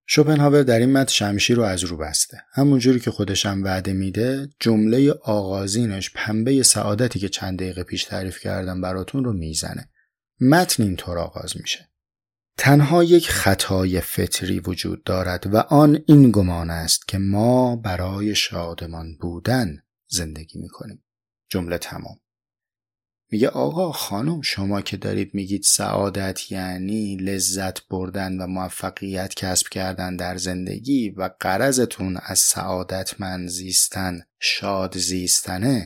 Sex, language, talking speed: male, Persian, 130 wpm